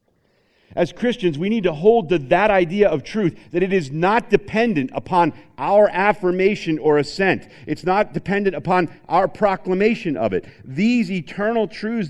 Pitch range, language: 140-190 Hz, English